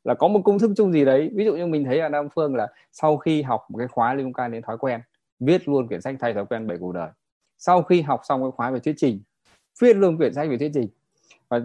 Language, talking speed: Vietnamese, 285 wpm